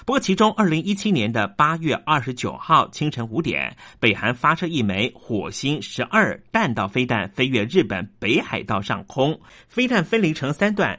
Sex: male